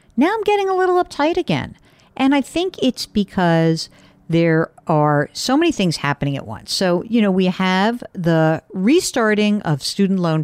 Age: 50-69